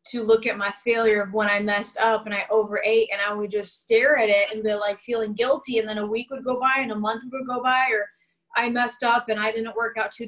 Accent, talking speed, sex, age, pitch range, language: American, 280 wpm, female, 20-39, 220-270 Hz, English